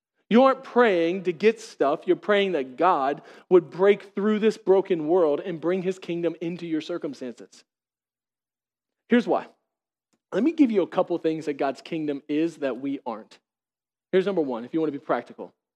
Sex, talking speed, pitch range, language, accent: male, 185 wpm, 170-240 Hz, English, American